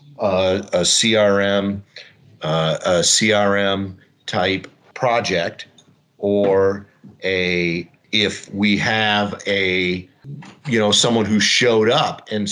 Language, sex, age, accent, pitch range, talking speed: English, male, 50-69, American, 90-120 Hz, 100 wpm